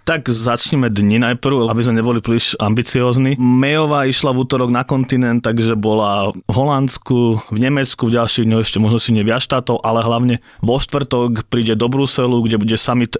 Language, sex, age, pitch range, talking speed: Slovak, male, 30-49, 115-130 Hz, 175 wpm